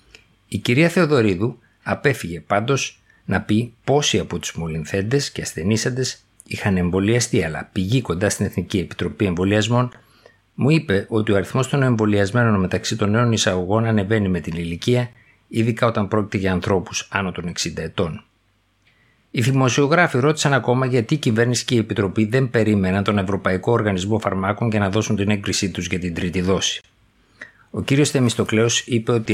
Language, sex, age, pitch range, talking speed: Greek, male, 50-69, 95-120 Hz, 160 wpm